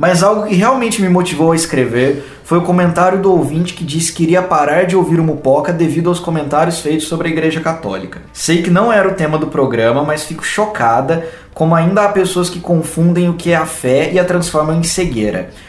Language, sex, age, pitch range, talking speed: Portuguese, male, 20-39, 150-180 Hz, 220 wpm